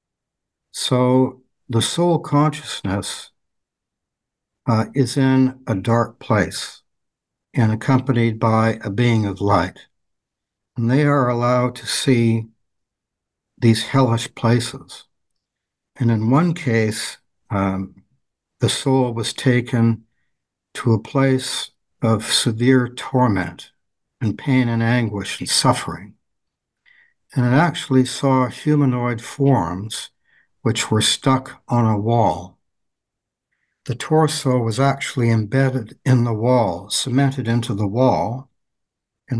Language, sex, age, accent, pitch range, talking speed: English, male, 60-79, American, 110-130 Hz, 110 wpm